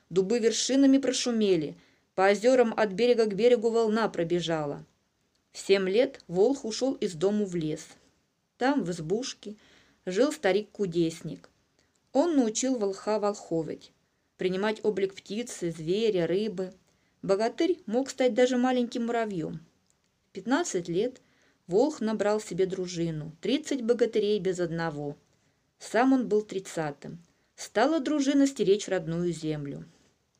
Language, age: Russian, 20-39